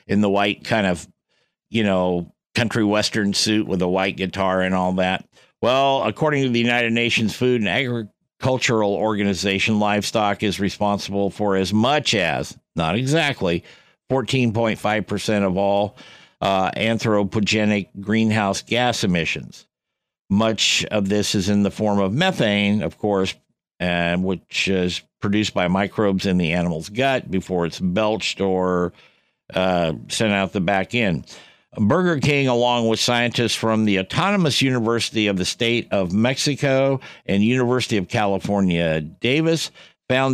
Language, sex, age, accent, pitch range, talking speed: English, male, 50-69, American, 95-120 Hz, 140 wpm